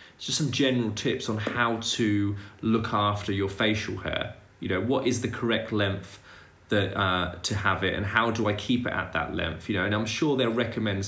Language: English